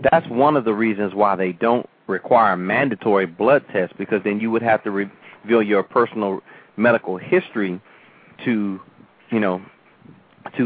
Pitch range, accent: 105-120 Hz, American